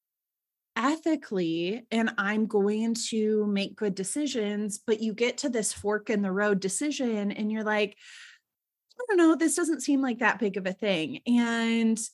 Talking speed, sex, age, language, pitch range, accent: 170 wpm, female, 20-39, English, 205-265 Hz, American